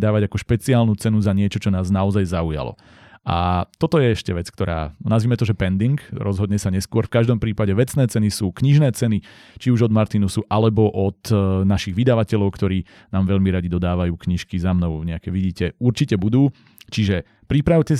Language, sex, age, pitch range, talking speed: Slovak, male, 30-49, 95-115 Hz, 175 wpm